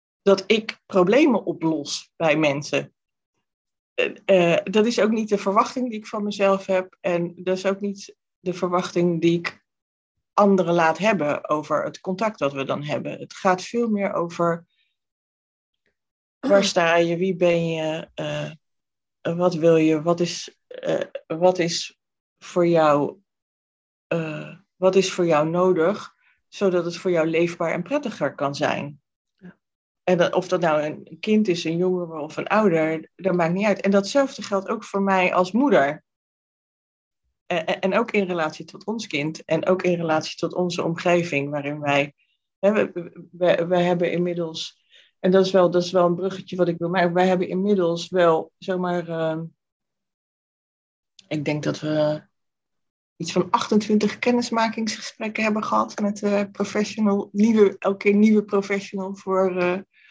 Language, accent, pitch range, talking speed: Dutch, Dutch, 165-200 Hz, 155 wpm